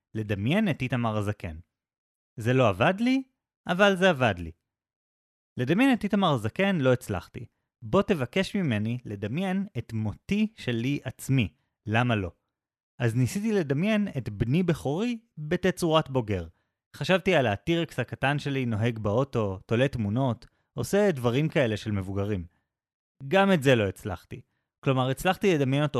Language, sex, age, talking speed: Hebrew, male, 30-49, 135 wpm